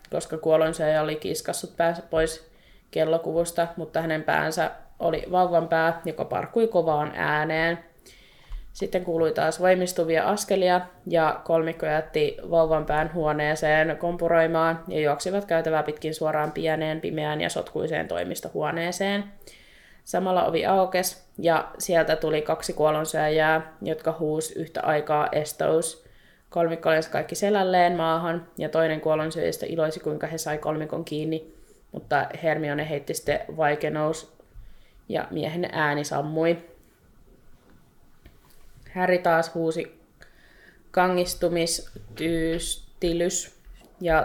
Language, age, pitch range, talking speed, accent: Finnish, 20-39, 155-170 Hz, 110 wpm, native